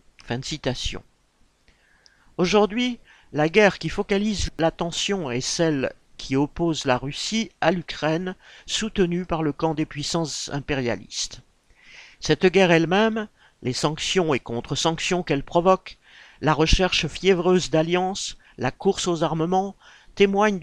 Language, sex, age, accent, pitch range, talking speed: French, male, 50-69, French, 140-180 Hz, 130 wpm